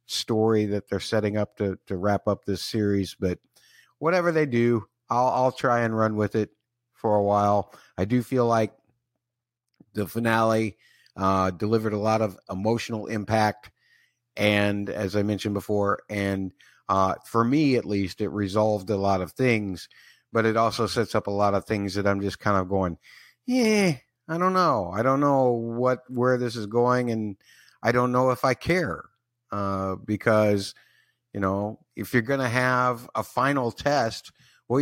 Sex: male